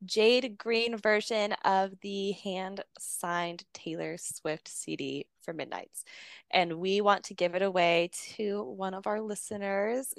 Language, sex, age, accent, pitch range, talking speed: English, female, 20-39, American, 175-210 Hz, 140 wpm